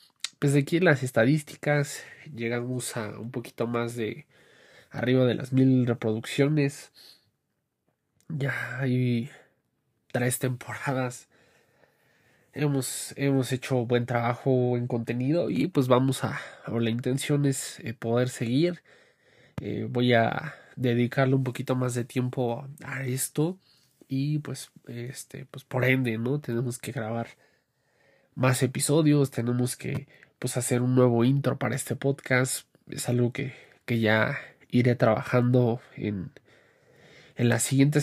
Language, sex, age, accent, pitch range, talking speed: Spanish, male, 20-39, Mexican, 120-140 Hz, 130 wpm